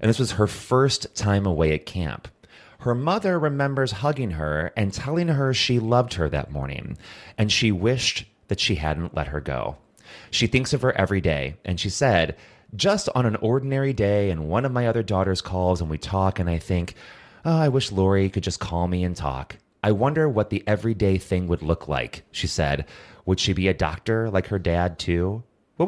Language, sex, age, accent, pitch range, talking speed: English, male, 30-49, American, 90-125 Hz, 205 wpm